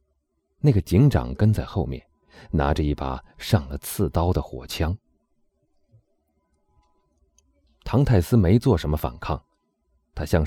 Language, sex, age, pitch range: Chinese, male, 30-49, 75-95 Hz